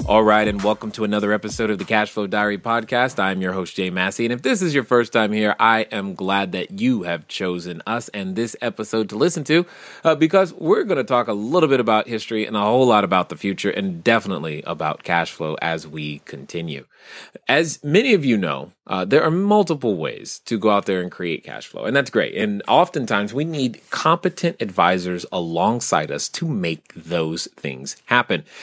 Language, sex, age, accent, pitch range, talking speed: English, male, 30-49, American, 100-155 Hz, 205 wpm